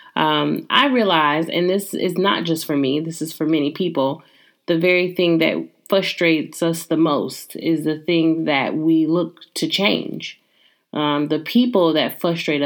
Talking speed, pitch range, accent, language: 170 wpm, 155-180 Hz, American, English